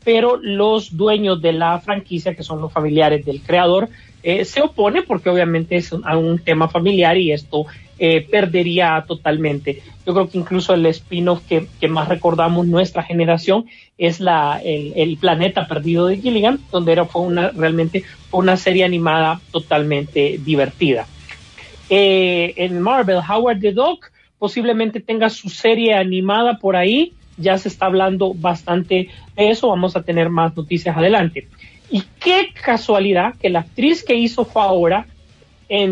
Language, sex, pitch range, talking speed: Spanish, male, 165-220 Hz, 160 wpm